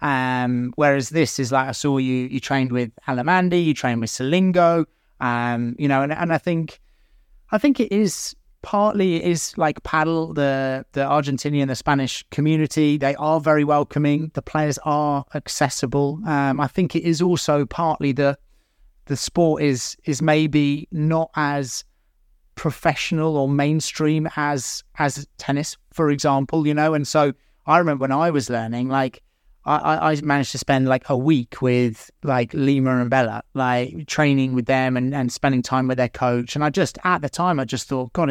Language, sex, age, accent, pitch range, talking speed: English, male, 30-49, British, 135-160 Hz, 175 wpm